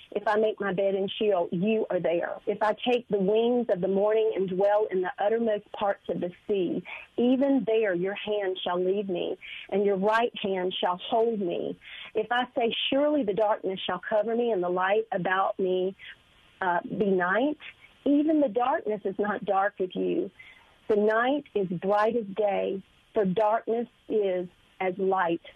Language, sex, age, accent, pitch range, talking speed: English, female, 40-59, American, 190-230 Hz, 180 wpm